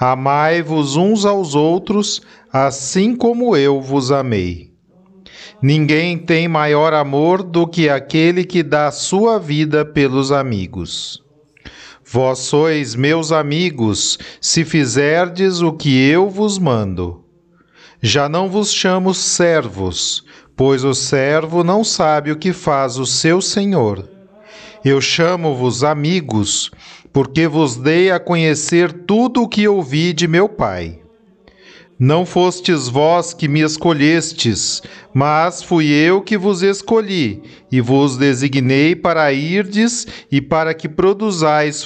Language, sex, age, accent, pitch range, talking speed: Portuguese, male, 40-59, Brazilian, 140-185 Hz, 120 wpm